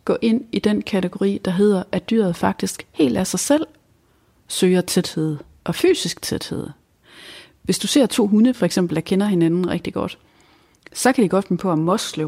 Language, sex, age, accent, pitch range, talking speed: Danish, female, 30-49, native, 175-215 Hz, 195 wpm